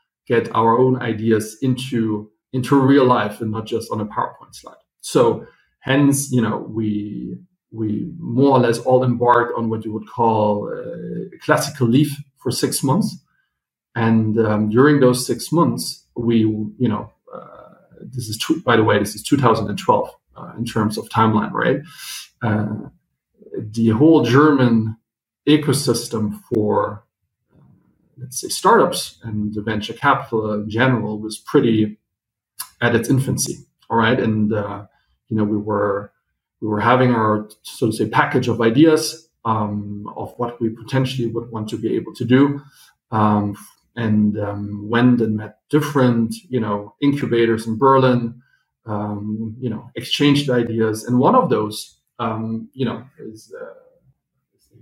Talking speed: 155 wpm